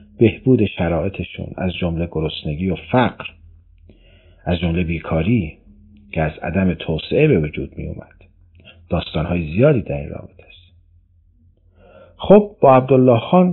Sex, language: male, Persian